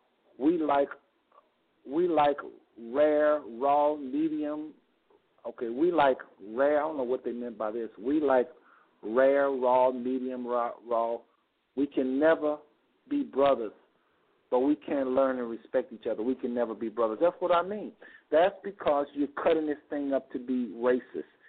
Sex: male